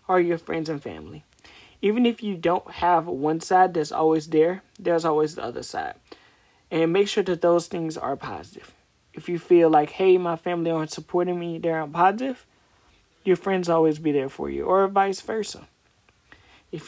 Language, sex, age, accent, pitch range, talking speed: English, male, 30-49, American, 150-180 Hz, 180 wpm